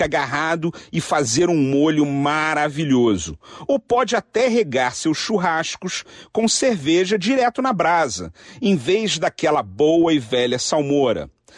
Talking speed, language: 125 wpm, Portuguese